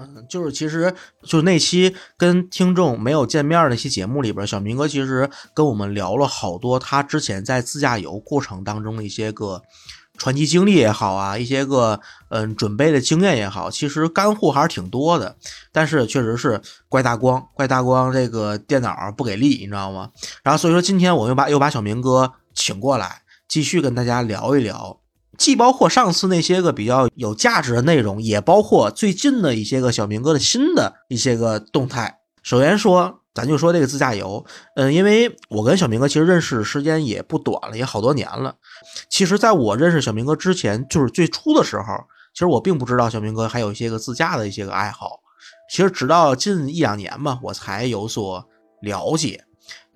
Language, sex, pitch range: Chinese, male, 110-165 Hz